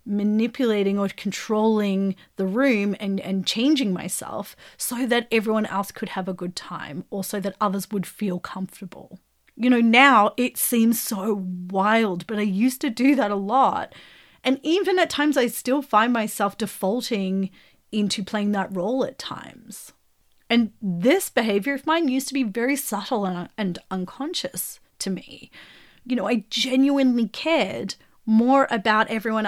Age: 30-49